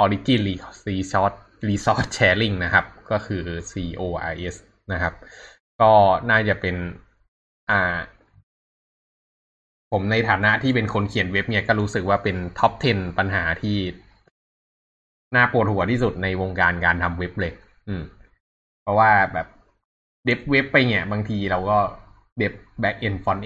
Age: 20-39